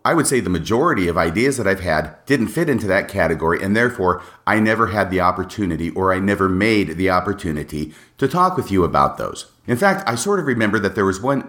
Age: 40-59